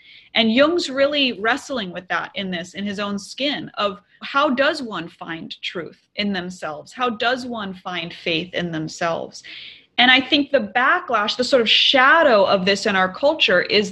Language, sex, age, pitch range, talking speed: English, female, 30-49, 195-255 Hz, 180 wpm